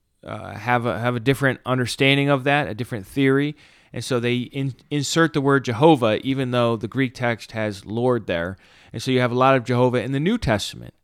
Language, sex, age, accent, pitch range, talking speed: English, male, 30-49, American, 110-135 Hz, 205 wpm